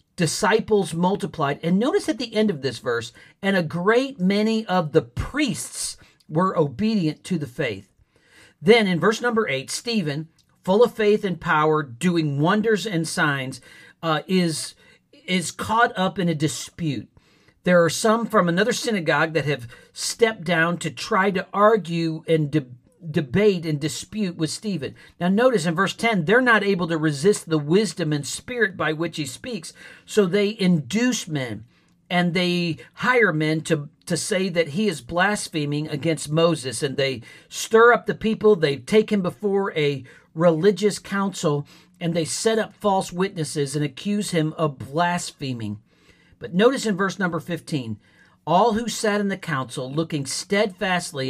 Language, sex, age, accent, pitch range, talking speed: English, male, 50-69, American, 155-205 Hz, 165 wpm